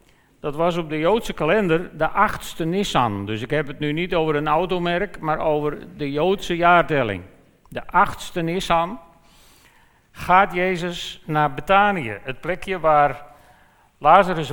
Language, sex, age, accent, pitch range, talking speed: Dutch, male, 50-69, Dutch, 140-180 Hz, 140 wpm